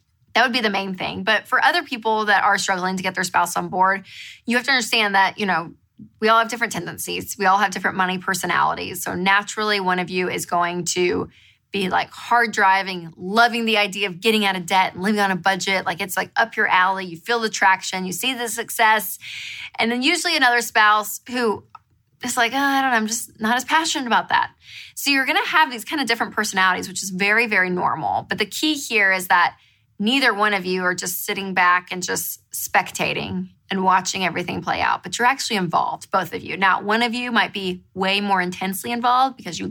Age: 20-39